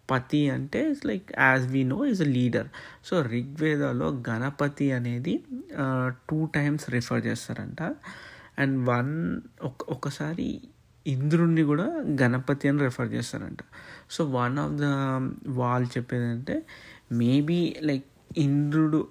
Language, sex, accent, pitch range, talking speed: Telugu, male, native, 125-145 Hz, 115 wpm